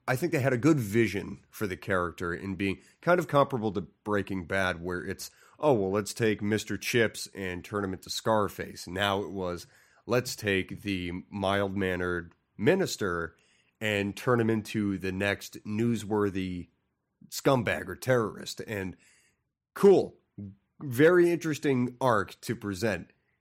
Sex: male